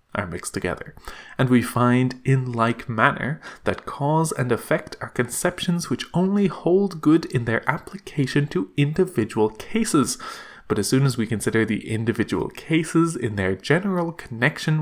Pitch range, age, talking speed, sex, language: 115-165 Hz, 20-39, 155 wpm, male, English